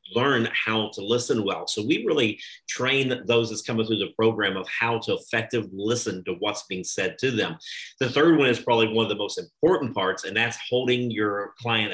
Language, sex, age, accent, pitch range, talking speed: English, male, 40-59, American, 110-125 Hz, 210 wpm